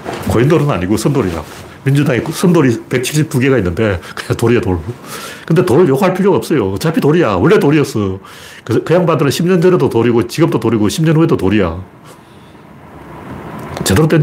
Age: 40-59